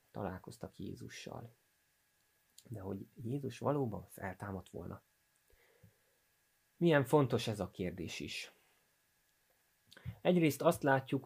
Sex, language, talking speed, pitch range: male, Hungarian, 90 wpm, 100-135 Hz